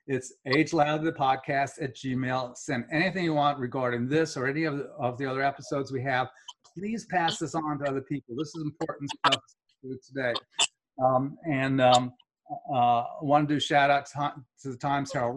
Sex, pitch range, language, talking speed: male, 130-150 Hz, English, 185 wpm